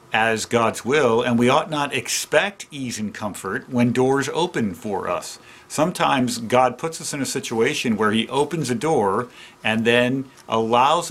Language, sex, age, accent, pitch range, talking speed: English, male, 50-69, American, 115-140 Hz, 165 wpm